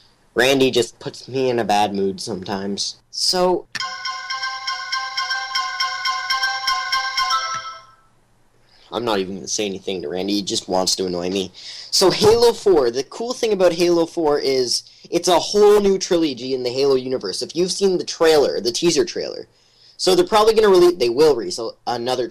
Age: 10-29